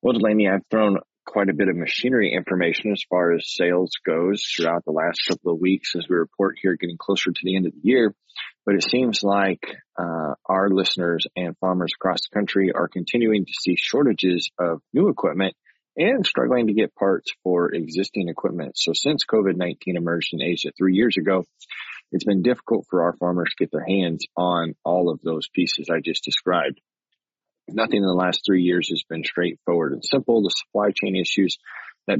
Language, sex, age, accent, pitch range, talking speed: English, male, 20-39, American, 85-100 Hz, 195 wpm